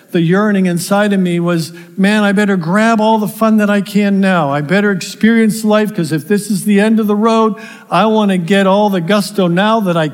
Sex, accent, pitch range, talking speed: male, American, 185-225 Hz, 235 wpm